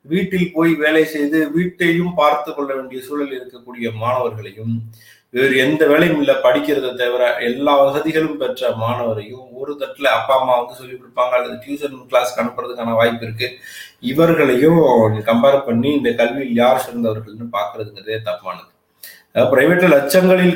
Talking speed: 130 wpm